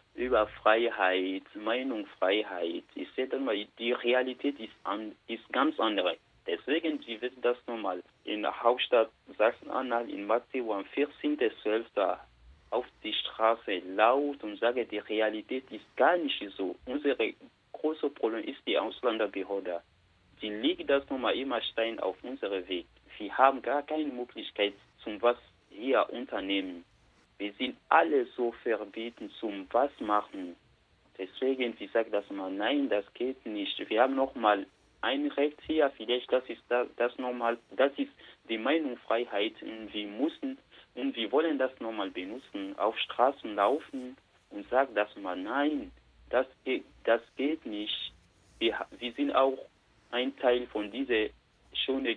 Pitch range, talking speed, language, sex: 105-135 Hz, 145 wpm, German, male